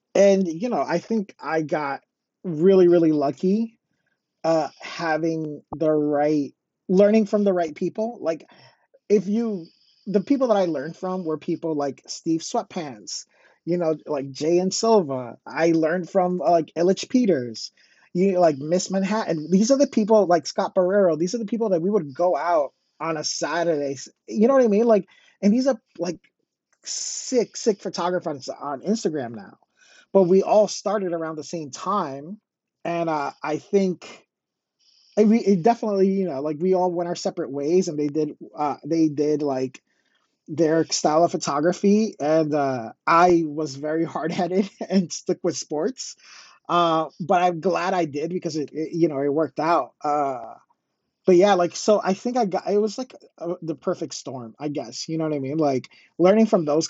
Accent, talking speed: American, 180 wpm